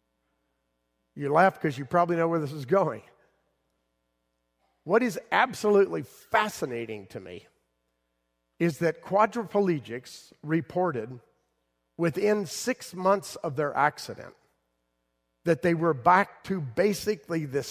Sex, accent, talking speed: male, American, 110 wpm